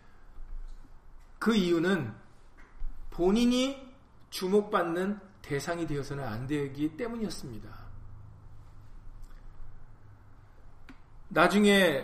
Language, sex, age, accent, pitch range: Korean, male, 40-59, native, 115-185 Hz